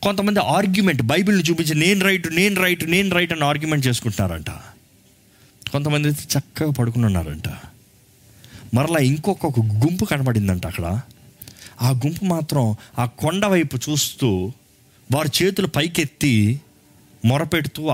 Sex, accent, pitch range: male, native, 115-155 Hz